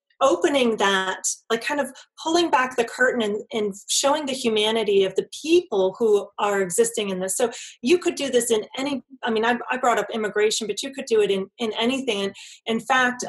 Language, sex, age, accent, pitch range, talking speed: English, female, 30-49, American, 210-275 Hz, 210 wpm